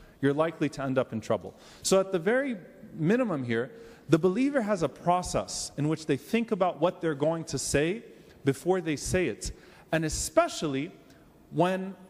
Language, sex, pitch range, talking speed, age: English, male, 155-200 Hz, 175 wpm, 30-49